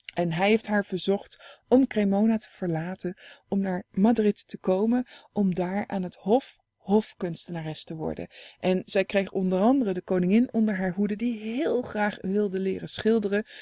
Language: Dutch